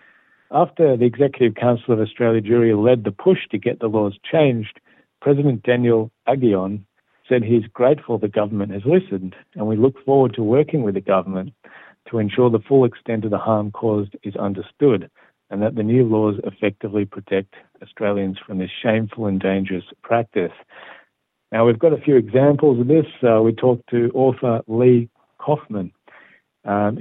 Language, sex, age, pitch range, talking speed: Hebrew, male, 50-69, 105-125 Hz, 165 wpm